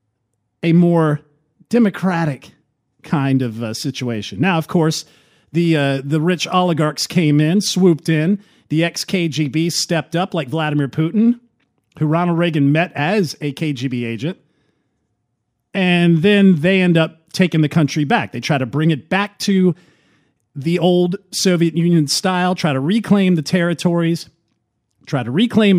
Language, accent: English, American